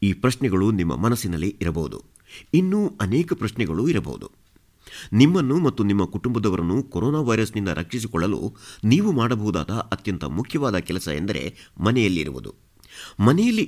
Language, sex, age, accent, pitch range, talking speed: Kannada, male, 50-69, native, 95-130 Hz, 105 wpm